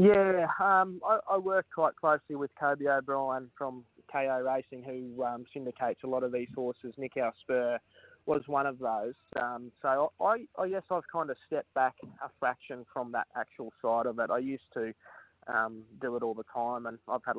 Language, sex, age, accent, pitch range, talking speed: English, male, 20-39, Australian, 125-145 Hz, 200 wpm